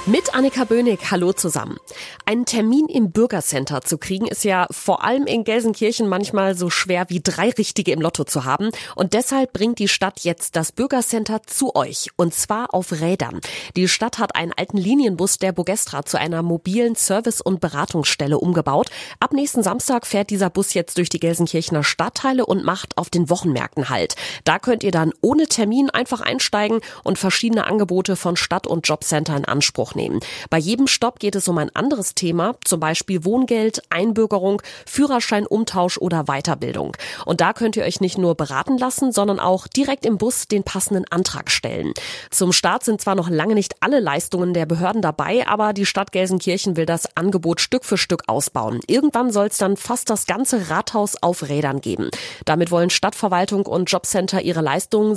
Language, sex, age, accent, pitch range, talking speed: German, female, 30-49, German, 170-225 Hz, 180 wpm